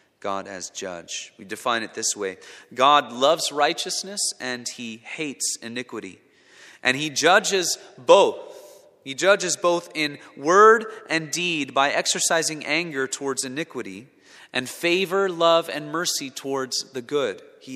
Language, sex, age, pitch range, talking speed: English, male, 30-49, 125-180 Hz, 135 wpm